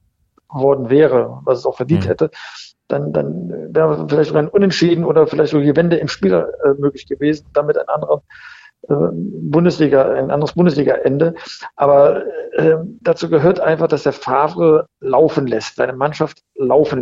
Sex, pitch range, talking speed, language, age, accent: male, 130-160 Hz, 155 wpm, German, 50-69, German